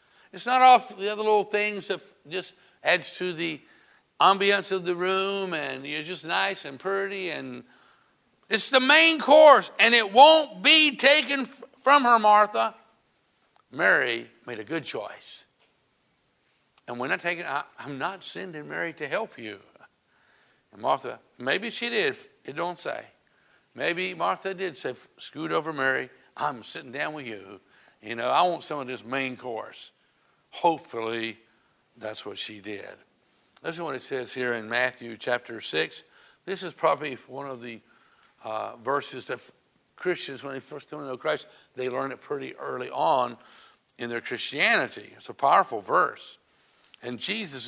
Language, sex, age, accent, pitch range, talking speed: English, male, 60-79, American, 125-210 Hz, 160 wpm